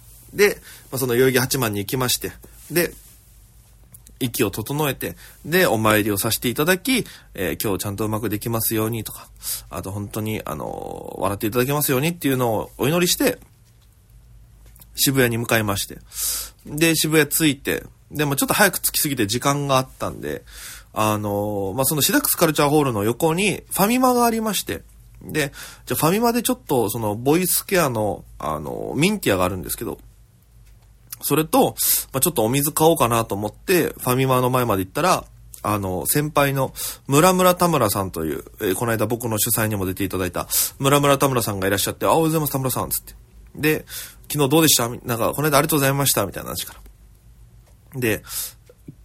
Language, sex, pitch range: Japanese, male, 110-150 Hz